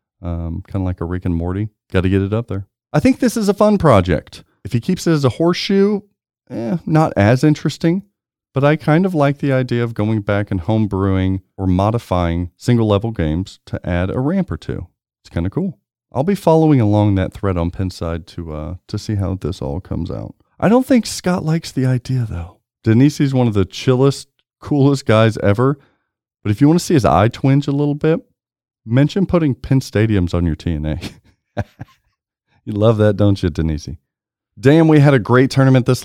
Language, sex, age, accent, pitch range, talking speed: English, male, 40-59, American, 95-140 Hz, 205 wpm